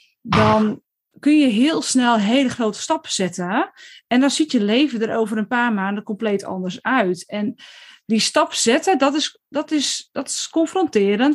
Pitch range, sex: 210-280 Hz, female